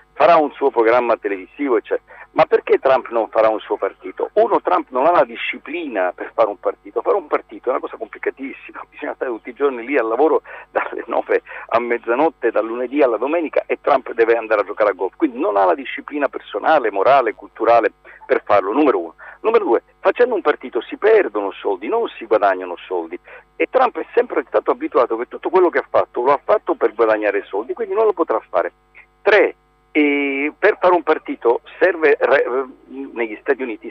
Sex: male